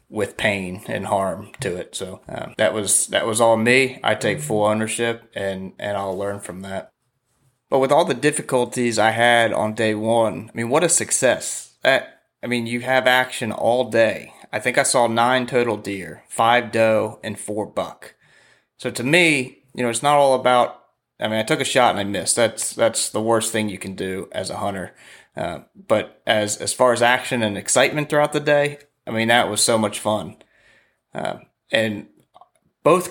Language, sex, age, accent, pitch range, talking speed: English, male, 30-49, American, 105-125 Hz, 200 wpm